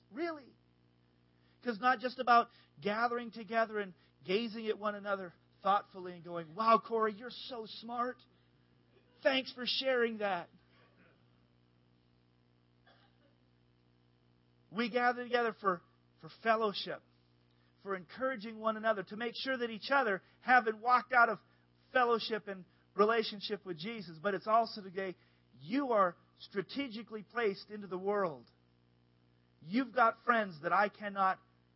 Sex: male